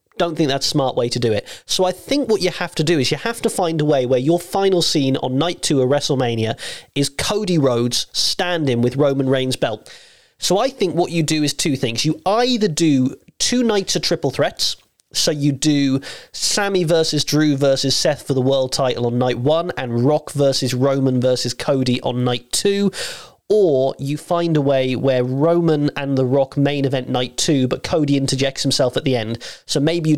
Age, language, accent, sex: 30-49, English, British, male